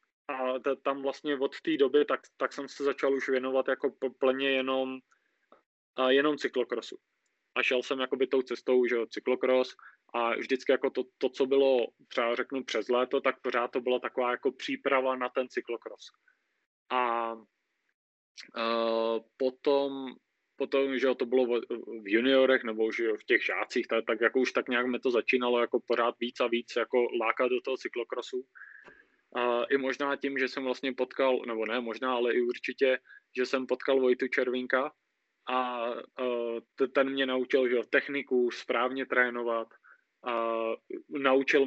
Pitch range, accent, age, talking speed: 120-135 Hz, native, 20-39, 160 wpm